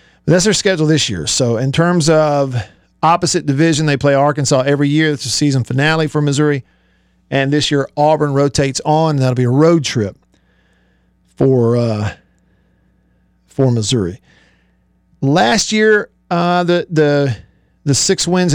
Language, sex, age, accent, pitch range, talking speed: English, male, 50-69, American, 110-160 Hz, 145 wpm